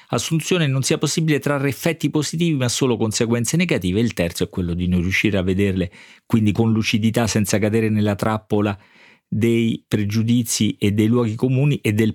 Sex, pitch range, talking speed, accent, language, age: male, 100-130 Hz, 175 wpm, native, Italian, 40-59